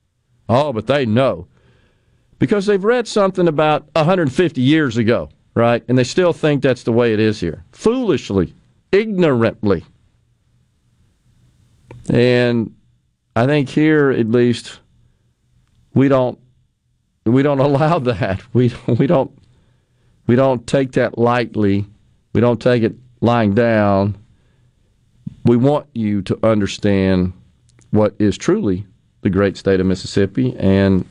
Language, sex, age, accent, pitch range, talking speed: English, male, 50-69, American, 105-130 Hz, 125 wpm